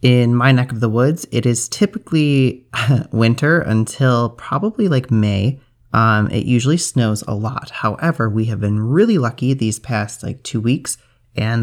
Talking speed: 165 wpm